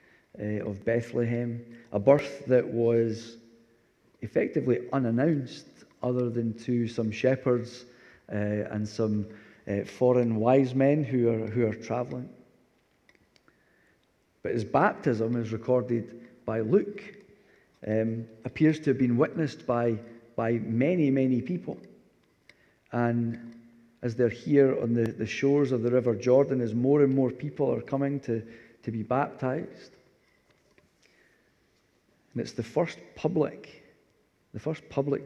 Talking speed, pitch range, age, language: 125 wpm, 115-130 Hz, 40-59, English